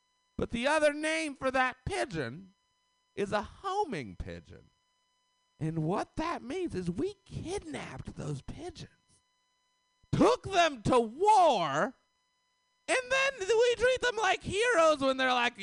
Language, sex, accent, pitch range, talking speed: English, male, American, 190-310 Hz, 130 wpm